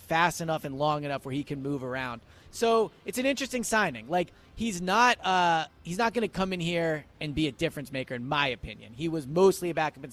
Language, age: English, 30-49